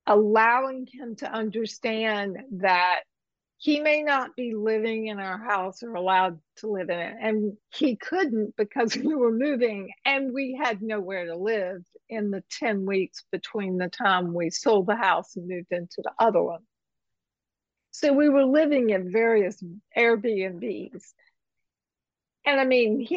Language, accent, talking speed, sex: English, American, 155 wpm, female